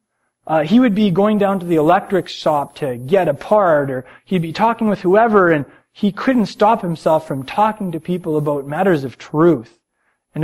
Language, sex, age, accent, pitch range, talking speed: English, male, 20-39, American, 155-215 Hz, 195 wpm